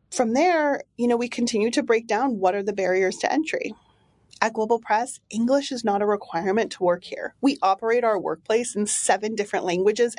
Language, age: English, 30-49